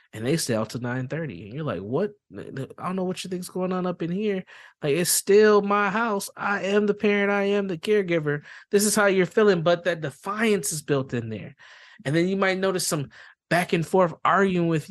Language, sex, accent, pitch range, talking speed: English, male, American, 130-185 Hz, 235 wpm